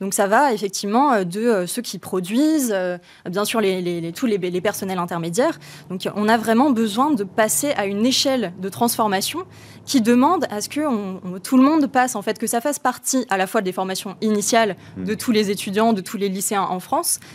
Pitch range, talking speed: 195-240 Hz, 220 wpm